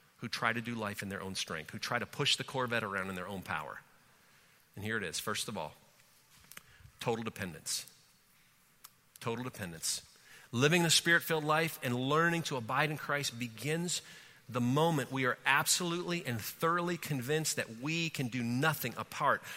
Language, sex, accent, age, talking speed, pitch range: English, male, American, 40-59, 175 wpm, 130-170 Hz